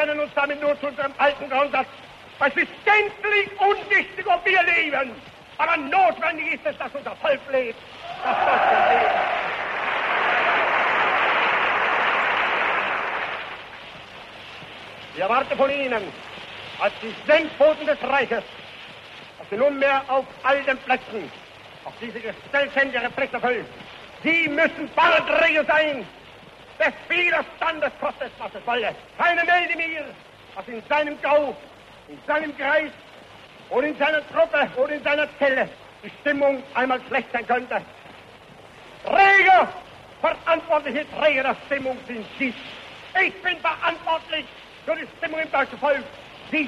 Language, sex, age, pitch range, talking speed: German, male, 60-79, 260-320 Hz, 130 wpm